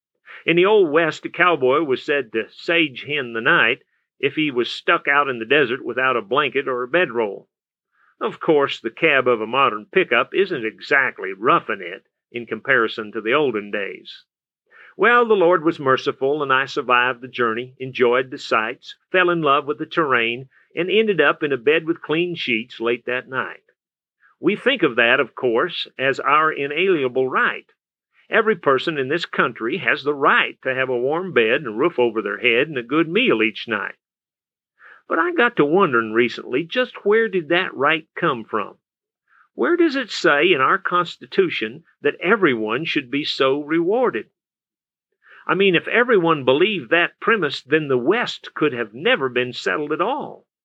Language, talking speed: English, 180 wpm